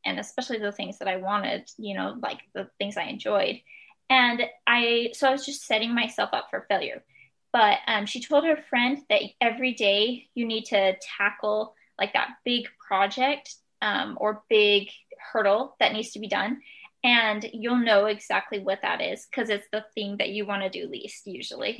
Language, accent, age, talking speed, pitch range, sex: English, American, 10-29, 190 wpm, 200-255 Hz, female